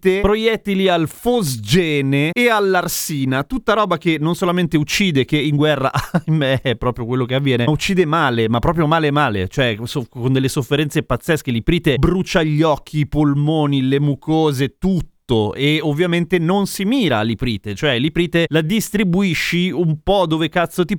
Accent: native